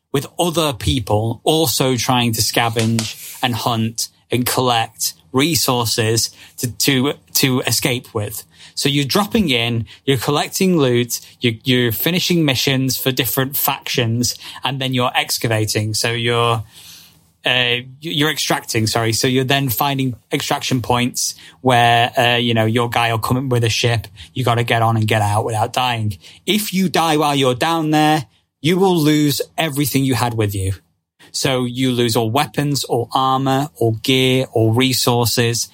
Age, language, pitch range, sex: 20-39, English, 115-140 Hz, male